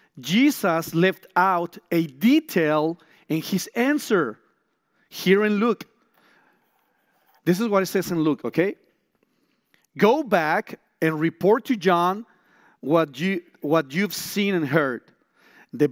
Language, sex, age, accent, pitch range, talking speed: English, male, 40-59, Mexican, 155-200 Hz, 120 wpm